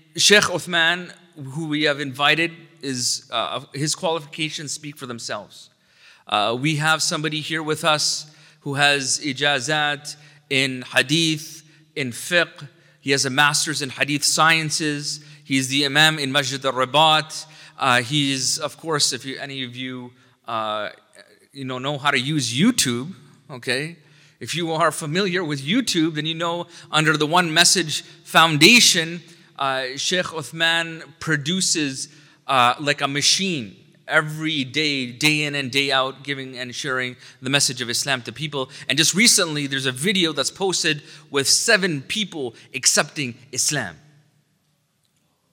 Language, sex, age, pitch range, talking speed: English, male, 30-49, 135-165 Hz, 145 wpm